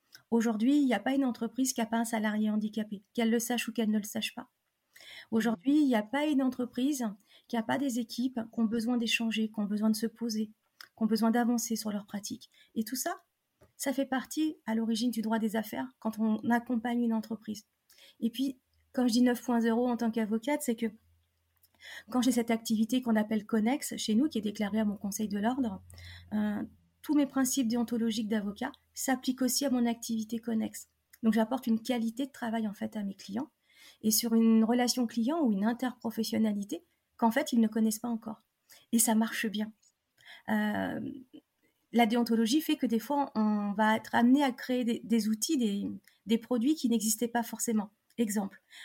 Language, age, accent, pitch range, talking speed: French, 30-49, French, 220-255 Hz, 200 wpm